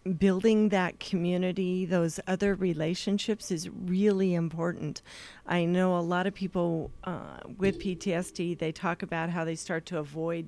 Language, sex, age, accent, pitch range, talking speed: English, female, 40-59, American, 170-200 Hz, 150 wpm